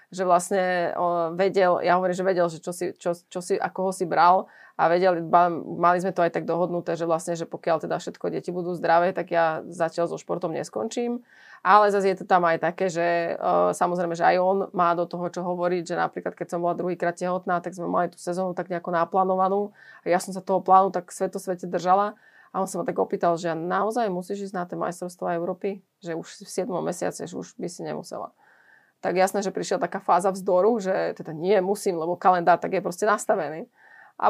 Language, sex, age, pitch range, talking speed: Slovak, female, 20-39, 175-195 Hz, 215 wpm